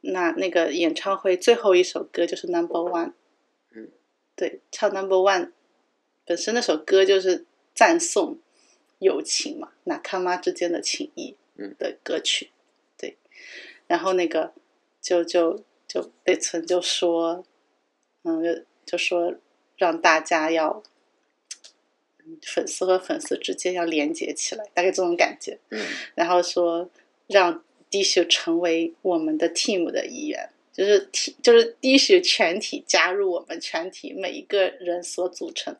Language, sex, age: Chinese, female, 30-49